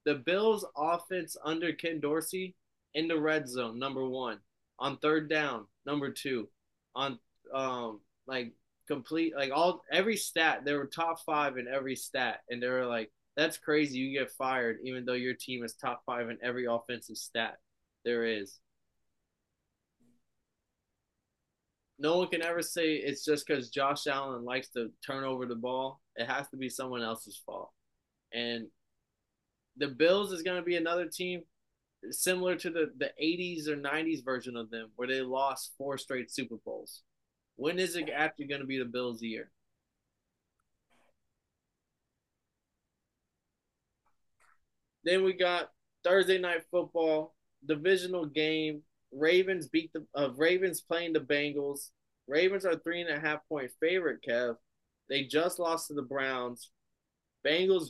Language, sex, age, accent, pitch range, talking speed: English, male, 20-39, American, 125-165 Hz, 150 wpm